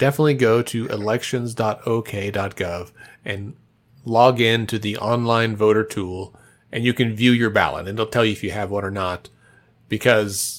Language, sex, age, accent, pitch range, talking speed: English, male, 30-49, American, 110-140 Hz, 165 wpm